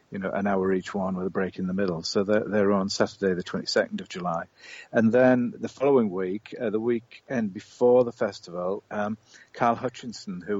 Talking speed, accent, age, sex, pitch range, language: 205 wpm, British, 40-59, male, 100-115 Hz, English